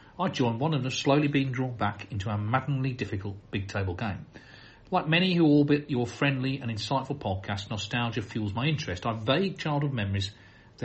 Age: 40-59